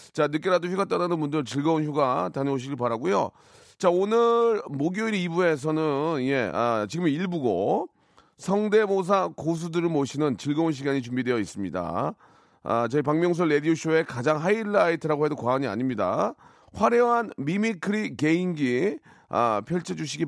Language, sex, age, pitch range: Korean, male, 40-59, 135-200 Hz